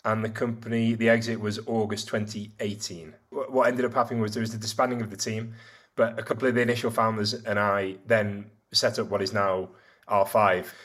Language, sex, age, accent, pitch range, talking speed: English, male, 20-39, British, 105-115 Hz, 210 wpm